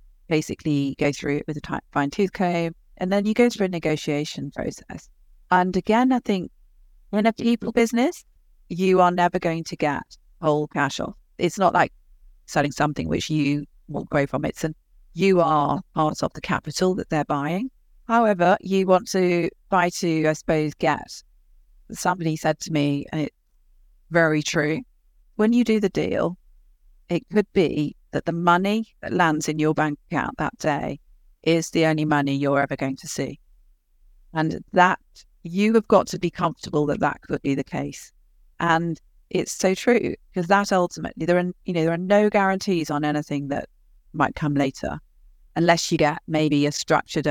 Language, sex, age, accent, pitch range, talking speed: English, female, 40-59, British, 145-185 Hz, 180 wpm